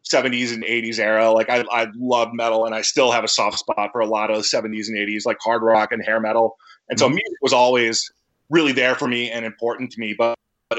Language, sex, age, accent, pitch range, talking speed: English, male, 30-49, American, 110-125 Hz, 245 wpm